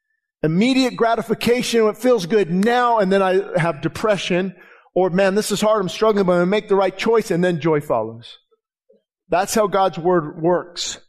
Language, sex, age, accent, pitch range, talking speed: English, male, 50-69, American, 175-225 Hz, 180 wpm